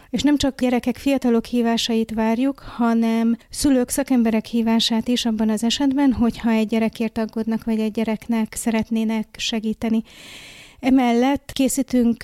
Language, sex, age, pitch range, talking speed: Hungarian, female, 30-49, 220-240 Hz, 130 wpm